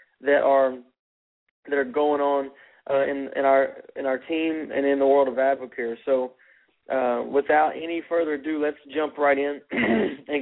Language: English